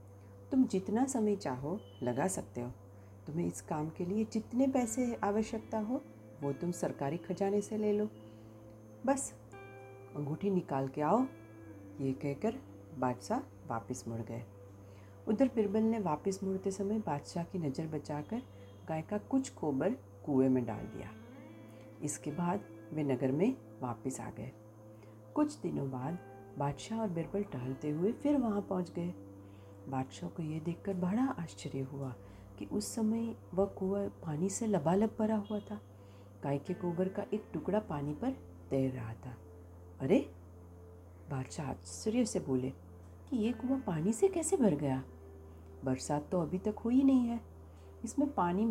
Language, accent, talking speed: Gujarati, native, 155 wpm